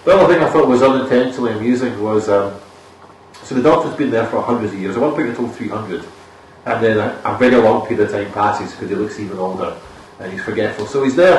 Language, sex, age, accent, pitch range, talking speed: English, male, 30-49, British, 100-130 Hz, 235 wpm